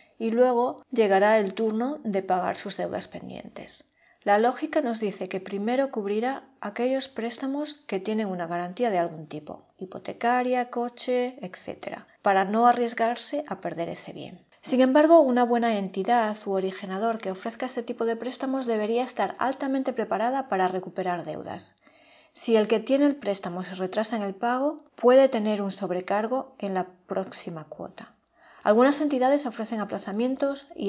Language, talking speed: Spanish, 155 wpm